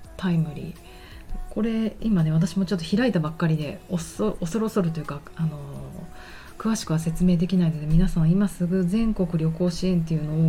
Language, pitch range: Japanese, 165-205 Hz